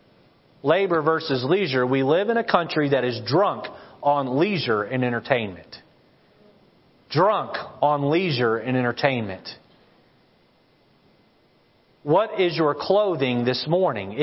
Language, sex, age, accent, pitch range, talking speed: English, male, 40-59, American, 130-180 Hz, 110 wpm